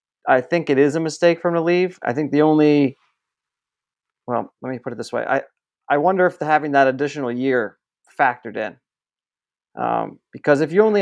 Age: 40-59